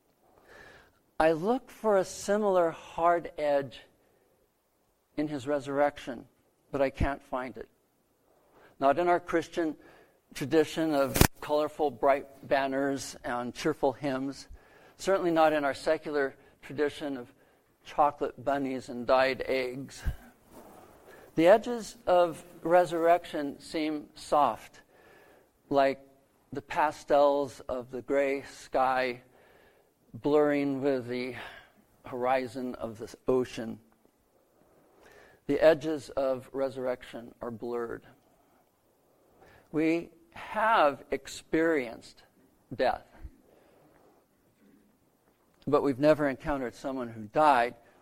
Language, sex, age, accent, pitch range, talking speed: English, male, 60-79, American, 130-160 Hz, 95 wpm